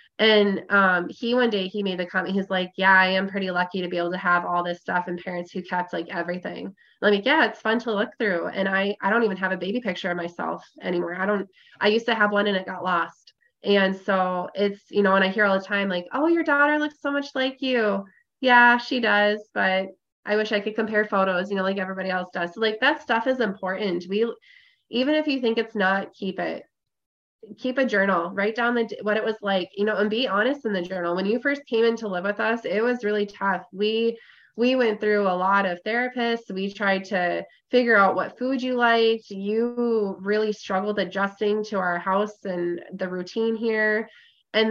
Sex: female